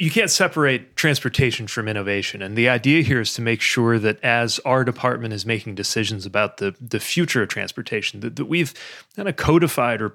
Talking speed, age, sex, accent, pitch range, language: 200 wpm, 30-49, male, American, 105-125 Hz, English